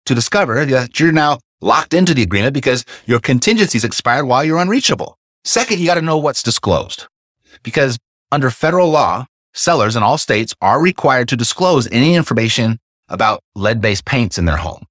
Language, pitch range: English, 105-150 Hz